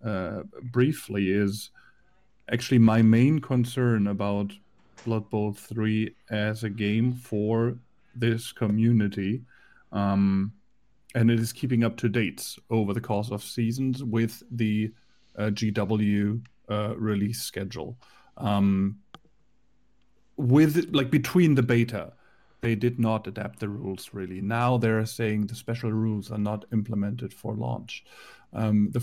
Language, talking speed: English, 130 wpm